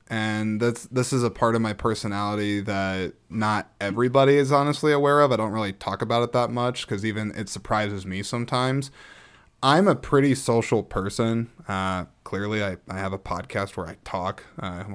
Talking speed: 190 wpm